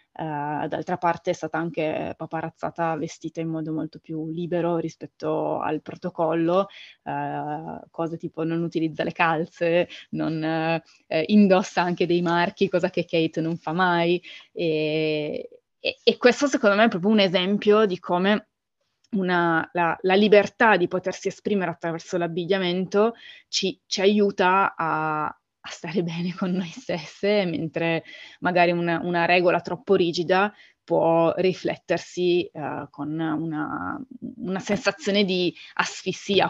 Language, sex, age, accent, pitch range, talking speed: Italian, female, 20-39, native, 165-200 Hz, 125 wpm